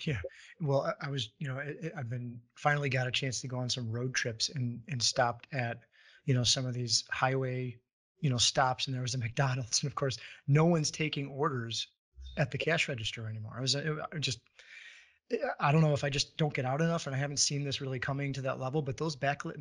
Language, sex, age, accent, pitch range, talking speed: English, male, 30-49, American, 125-145 Hz, 235 wpm